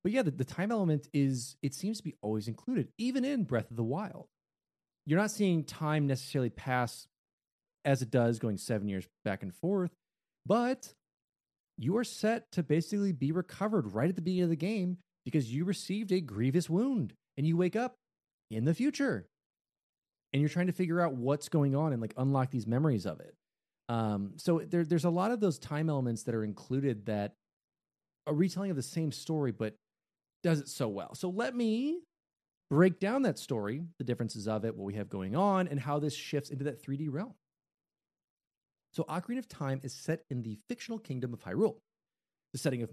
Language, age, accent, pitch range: English, 30-49, American, 125-185 Hz